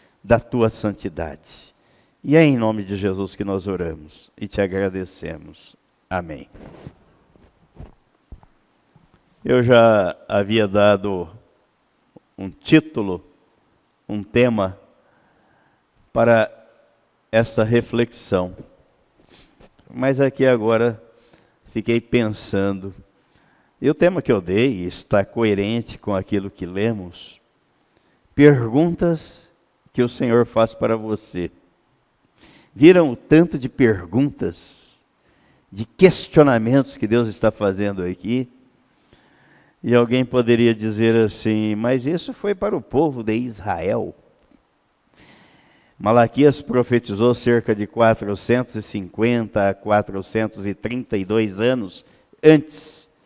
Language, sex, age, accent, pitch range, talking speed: Portuguese, male, 50-69, Brazilian, 100-125 Hz, 95 wpm